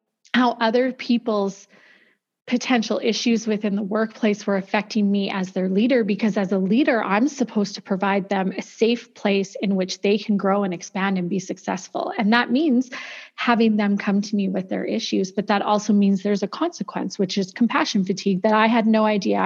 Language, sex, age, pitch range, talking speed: English, female, 30-49, 195-235 Hz, 195 wpm